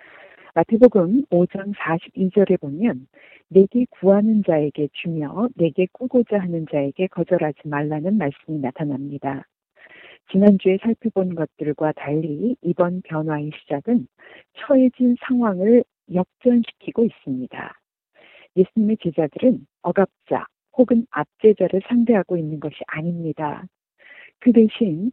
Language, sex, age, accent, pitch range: Korean, female, 40-59, native, 160-225 Hz